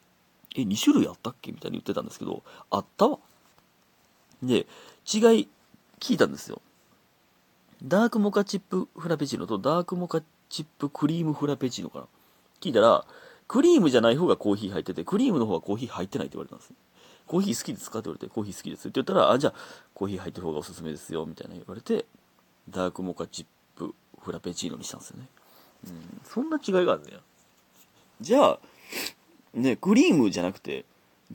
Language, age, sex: Japanese, 40-59, male